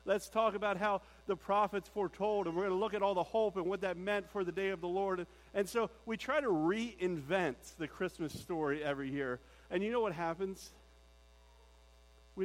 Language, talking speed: English, 205 wpm